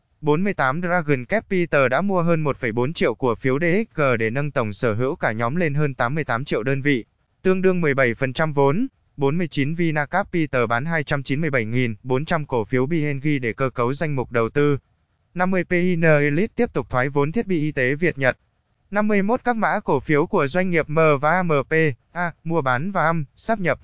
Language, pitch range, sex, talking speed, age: Vietnamese, 130-170 Hz, male, 185 wpm, 20-39